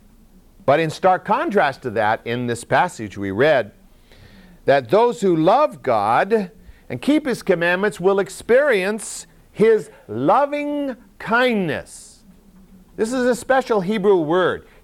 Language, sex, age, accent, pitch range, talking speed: English, male, 50-69, American, 150-220 Hz, 125 wpm